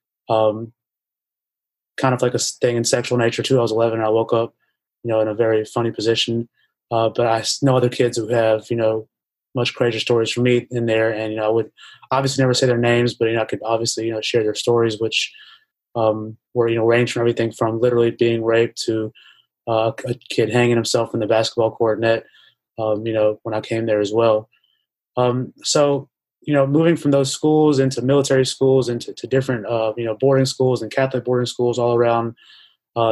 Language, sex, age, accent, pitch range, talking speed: English, male, 20-39, American, 115-130 Hz, 215 wpm